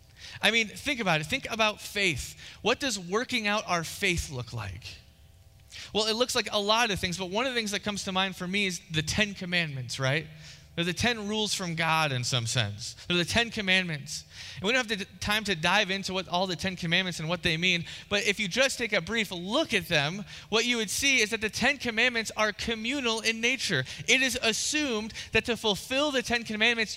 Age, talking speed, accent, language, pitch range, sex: 20-39, 230 wpm, American, English, 155-225 Hz, male